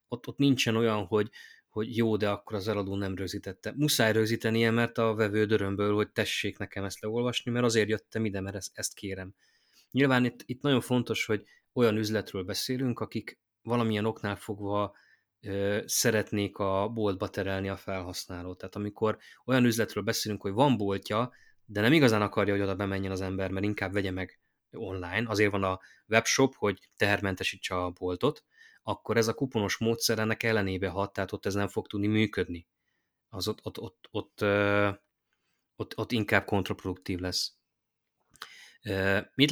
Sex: male